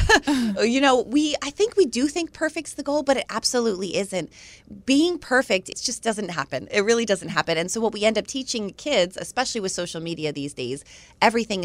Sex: female